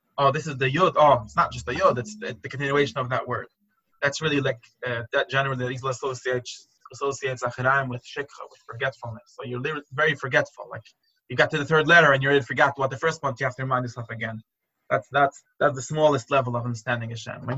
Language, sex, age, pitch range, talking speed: Hebrew, male, 20-39, 130-165 Hz, 230 wpm